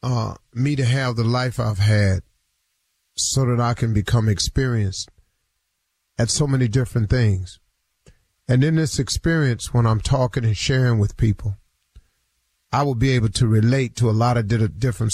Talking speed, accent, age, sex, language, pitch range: 165 wpm, American, 40-59, male, English, 110-135 Hz